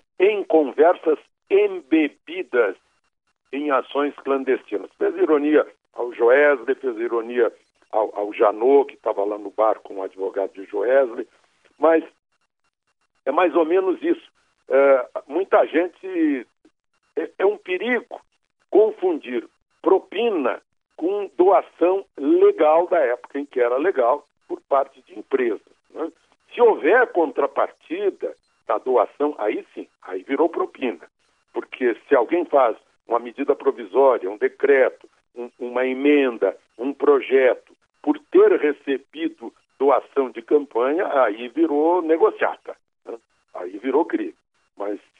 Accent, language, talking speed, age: Brazilian, Portuguese, 120 wpm, 60-79